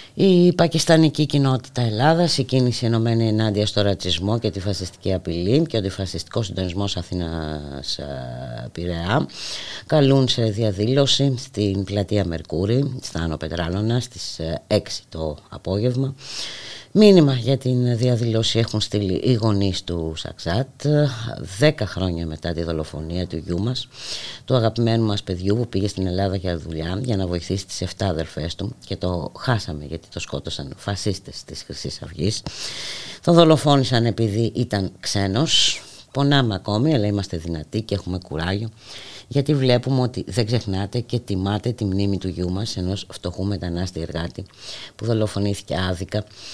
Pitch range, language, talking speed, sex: 90-120 Hz, Greek, 140 wpm, female